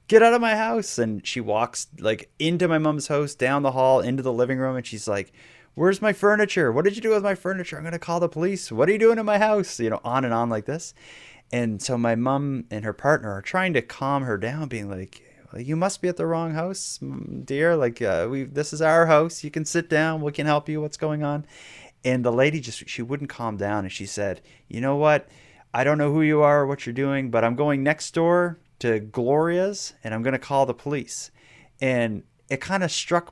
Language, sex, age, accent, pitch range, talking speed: English, male, 30-49, American, 115-155 Hz, 245 wpm